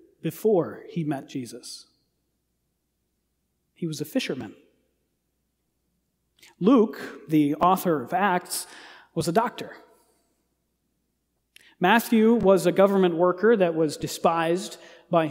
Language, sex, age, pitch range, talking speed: English, male, 40-59, 155-200 Hz, 100 wpm